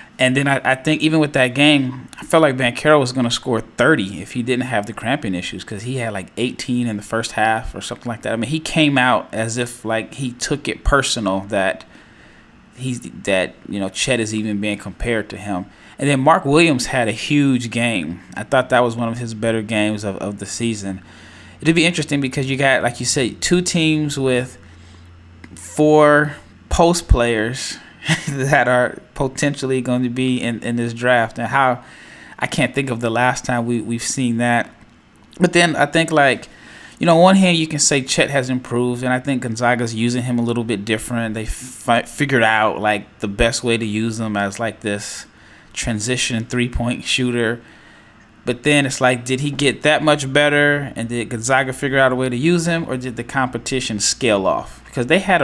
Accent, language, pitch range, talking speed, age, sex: American, English, 110-140 Hz, 210 wpm, 20-39, male